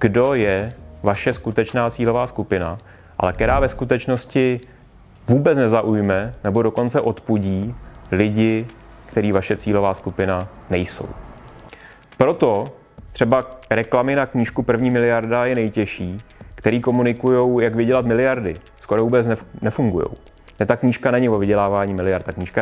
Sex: male